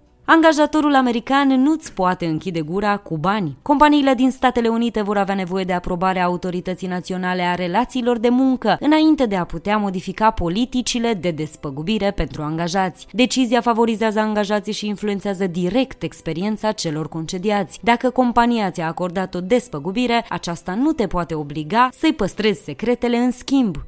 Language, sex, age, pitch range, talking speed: Romanian, female, 20-39, 175-245 Hz, 145 wpm